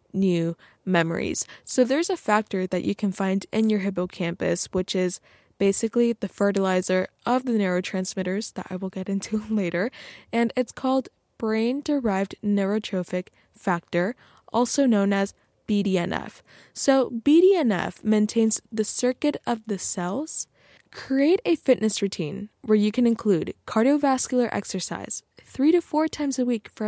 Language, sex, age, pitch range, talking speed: English, female, 10-29, 185-235 Hz, 140 wpm